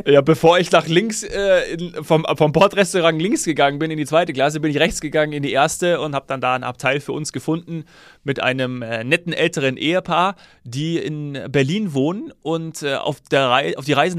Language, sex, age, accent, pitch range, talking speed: German, male, 30-49, German, 140-175 Hz, 210 wpm